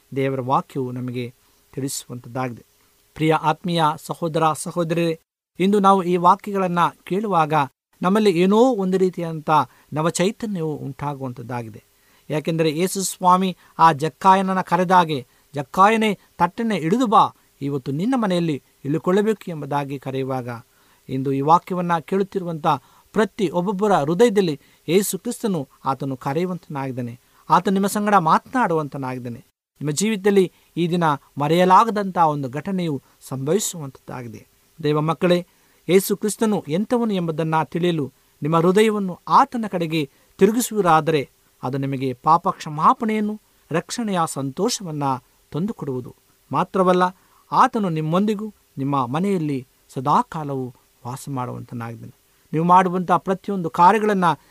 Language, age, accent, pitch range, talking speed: Kannada, 50-69, native, 140-195 Hz, 95 wpm